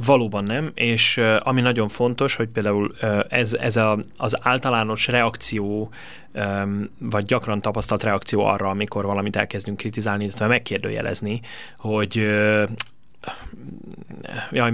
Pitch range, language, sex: 105-130 Hz, Hungarian, male